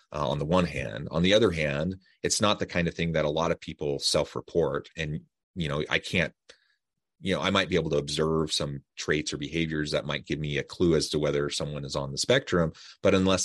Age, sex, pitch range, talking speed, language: 30-49, male, 75-90 Hz, 240 wpm, English